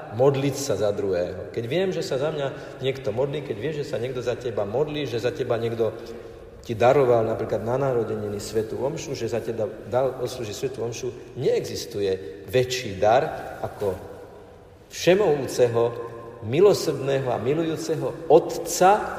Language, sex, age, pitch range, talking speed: Slovak, male, 50-69, 115-145 Hz, 145 wpm